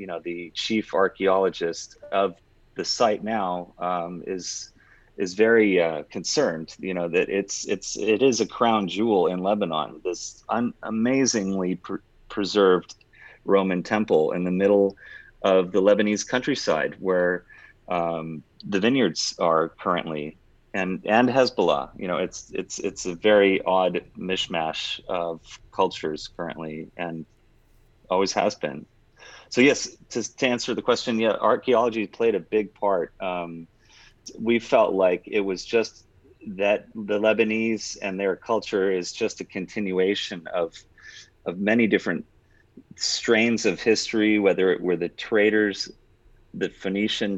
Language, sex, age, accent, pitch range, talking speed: English, male, 30-49, American, 90-110 Hz, 140 wpm